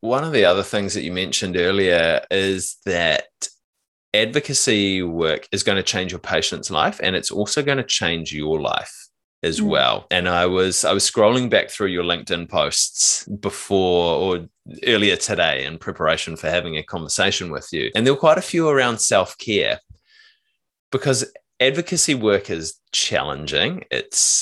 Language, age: English, 20-39